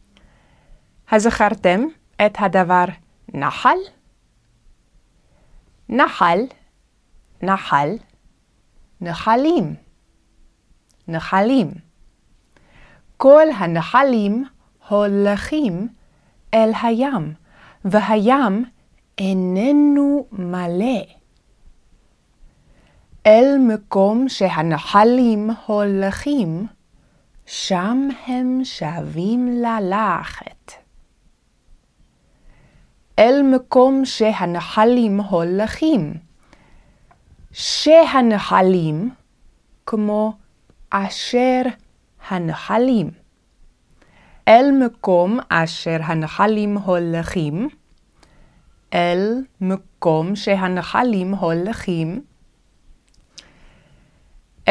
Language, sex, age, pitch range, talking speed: Hebrew, female, 30-49, 180-245 Hz, 40 wpm